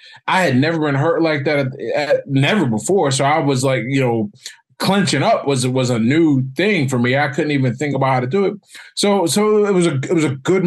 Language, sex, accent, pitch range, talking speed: English, male, American, 125-165 Hz, 235 wpm